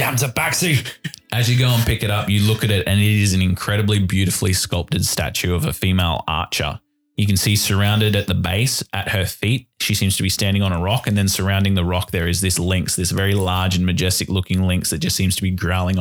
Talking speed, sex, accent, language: 245 wpm, male, Australian, English